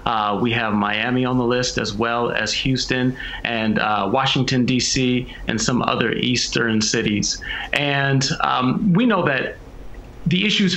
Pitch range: 130-160 Hz